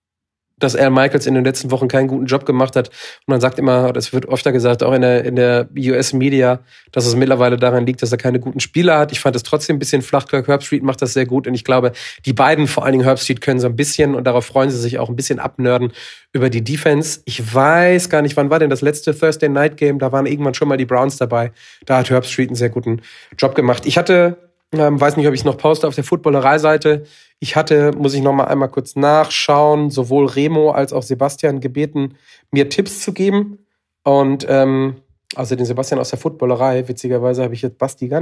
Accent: German